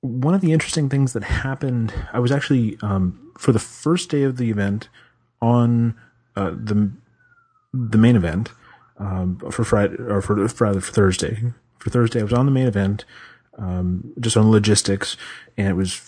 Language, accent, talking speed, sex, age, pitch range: English, American, 175 wpm, male, 30-49, 95-120 Hz